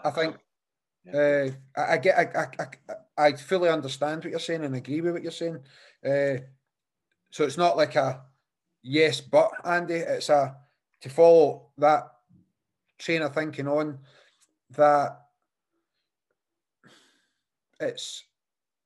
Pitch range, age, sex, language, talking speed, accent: 140-170 Hz, 30-49, male, English, 125 wpm, British